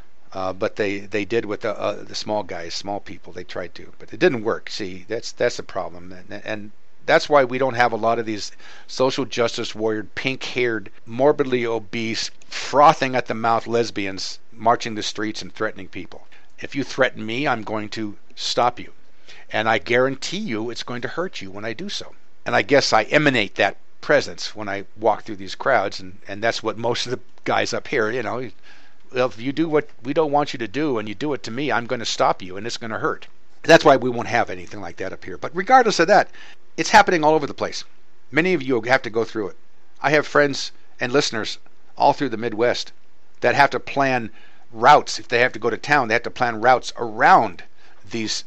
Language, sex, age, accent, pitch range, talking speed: English, male, 50-69, American, 105-135 Hz, 220 wpm